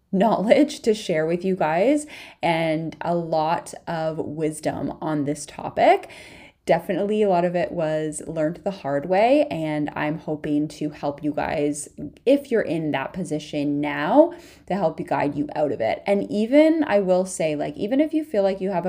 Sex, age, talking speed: female, 20-39, 185 wpm